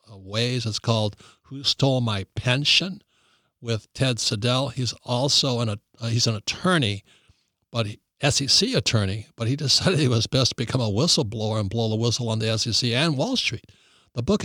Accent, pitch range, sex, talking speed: American, 115-145 Hz, male, 185 wpm